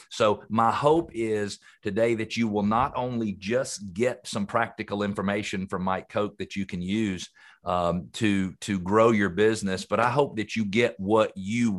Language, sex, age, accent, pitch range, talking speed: English, male, 50-69, American, 100-125 Hz, 185 wpm